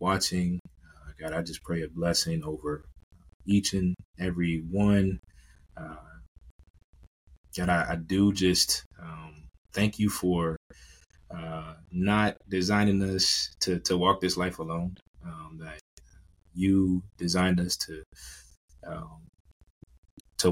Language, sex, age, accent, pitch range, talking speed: English, male, 20-39, American, 80-95 Hz, 120 wpm